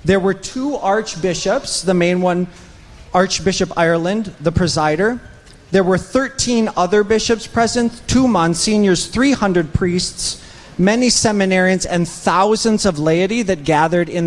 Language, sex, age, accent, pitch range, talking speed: English, male, 40-59, American, 145-185 Hz, 125 wpm